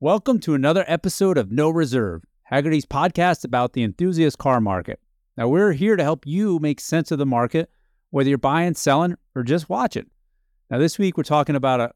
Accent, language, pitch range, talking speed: American, English, 115-155 Hz, 195 wpm